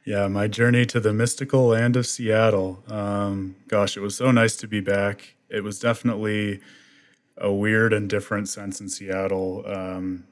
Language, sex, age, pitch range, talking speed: English, male, 20-39, 90-100 Hz, 170 wpm